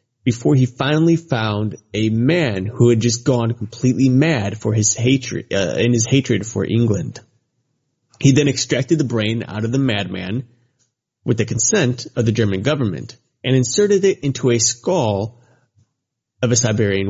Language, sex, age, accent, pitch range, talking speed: English, male, 30-49, American, 110-135 Hz, 160 wpm